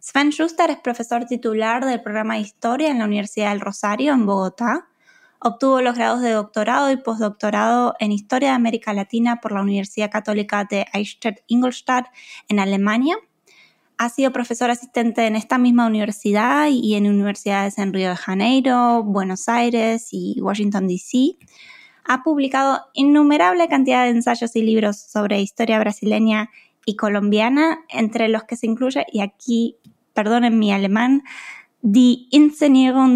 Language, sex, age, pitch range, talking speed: Spanish, female, 20-39, 210-260 Hz, 145 wpm